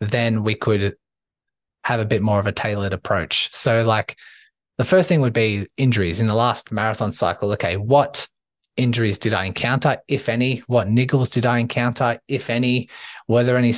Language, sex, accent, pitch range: English, male, Australian, 100-120 Hz